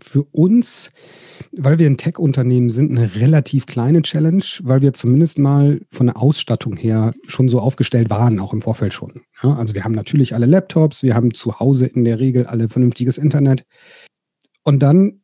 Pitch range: 125-150 Hz